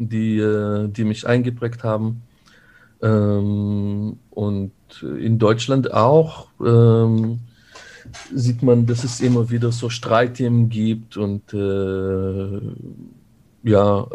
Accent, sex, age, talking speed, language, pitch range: German, male, 50-69, 85 wpm, German, 105-120 Hz